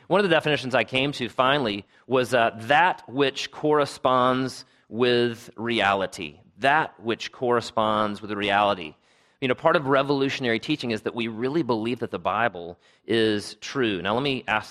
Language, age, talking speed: English, 40-59, 165 wpm